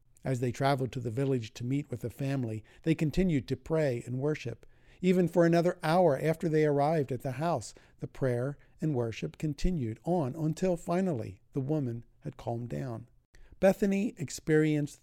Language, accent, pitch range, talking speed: English, American, 120-155 Hz, 170 wpm